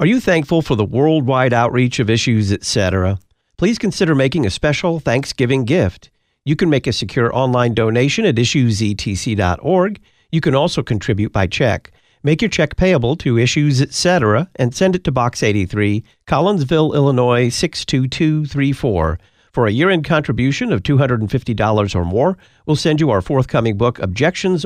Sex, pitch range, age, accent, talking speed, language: male, 120-155 Hz, 50-69, American, 155 wpm, English